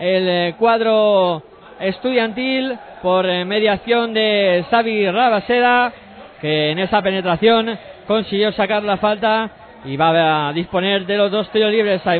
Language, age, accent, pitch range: Spanish, 20-39, Spanish, 190-230 Hz